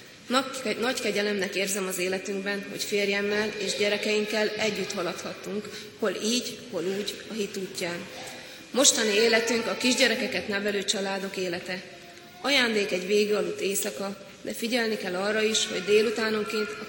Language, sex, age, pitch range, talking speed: Hungarian, female, 20-39, 190-225 Hz, 135 wpm